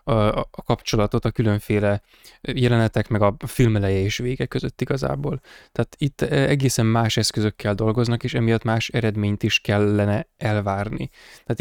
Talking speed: 135 wpm